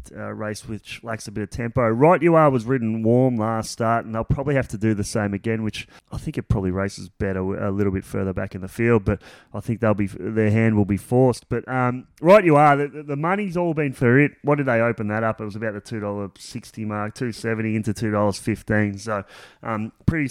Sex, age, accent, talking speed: male, 20-39, Australian, 250 wpm